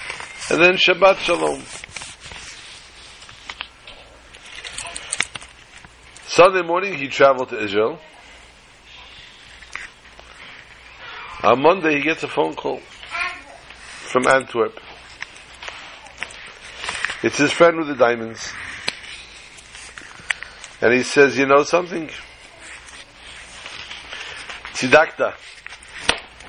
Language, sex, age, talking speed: English, male, 60-79, 75 wpm